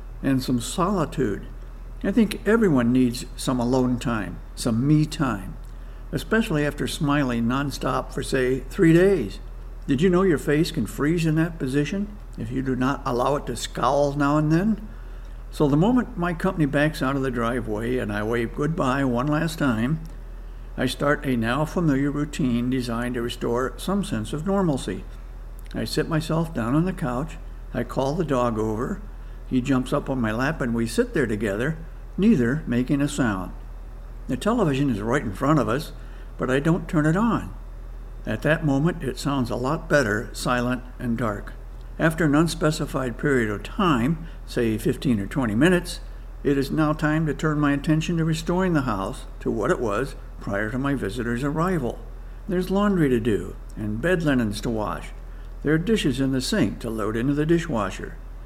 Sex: male